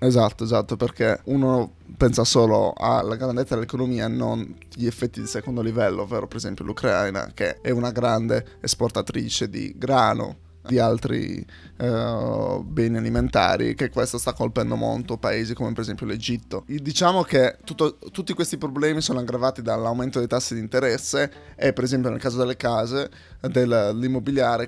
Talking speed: 150 wpm